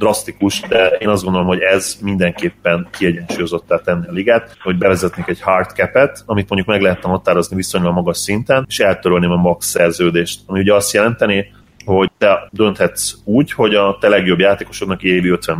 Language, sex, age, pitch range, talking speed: Hungarian, male, 30-49, 90-100 Hz, 175 wpm